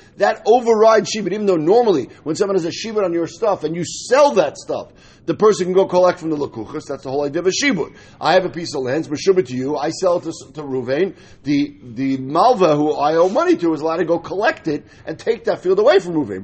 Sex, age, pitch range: male, 50-69, 150-205 Hz